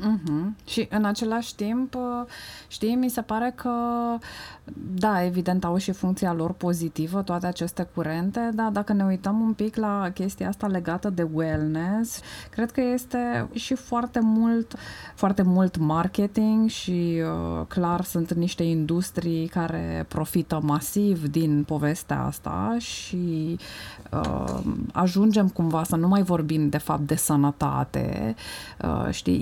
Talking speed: 130 wpm